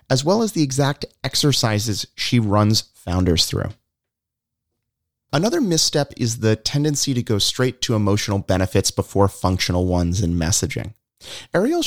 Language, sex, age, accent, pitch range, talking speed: English, male, 30-49, American, 95-130 Hz, 135 wpm